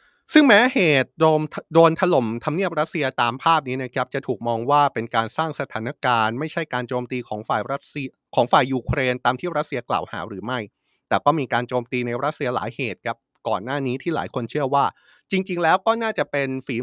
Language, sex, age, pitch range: Thai, male, 20-39, 120-165 Hz